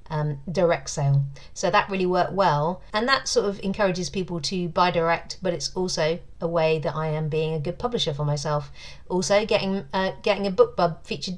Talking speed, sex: 200 wpm, female